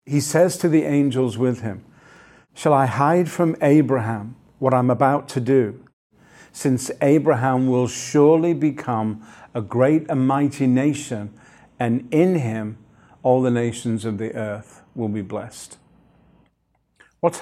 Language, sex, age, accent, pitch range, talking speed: English, male, 50-69, British, 115-140 Hz, 140 wpm